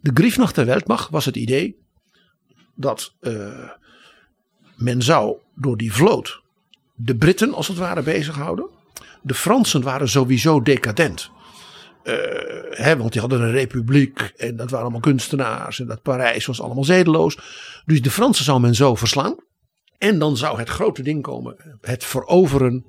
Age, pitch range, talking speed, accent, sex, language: 60-79, 115-160 Hz, 150 wpm, Dutch, male, Dutch